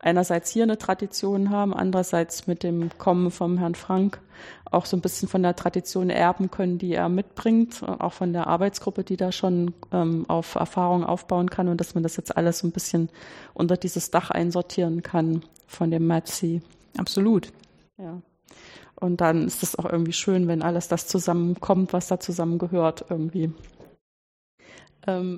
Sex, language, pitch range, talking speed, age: female, German, 170-195 Hz, 170 wpm, 30-49